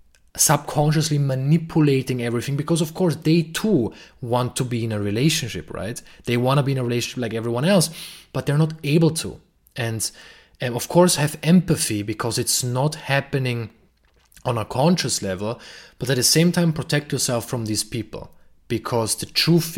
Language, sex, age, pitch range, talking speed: English, male, 20-39, 115-150 Hz, 175 wpm